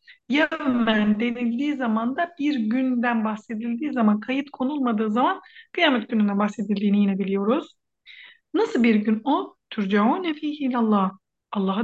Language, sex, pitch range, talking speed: Turkish, female, 220-310 Hz, 120 wpm